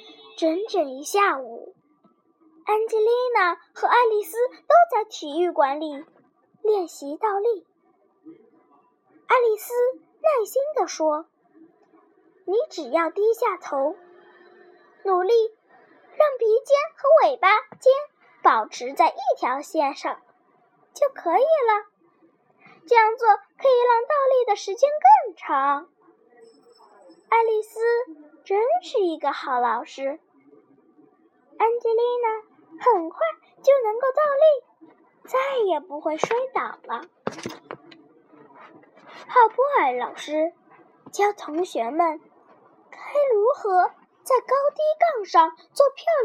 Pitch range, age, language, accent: 315-440 Hz, 10-29, Chinese, native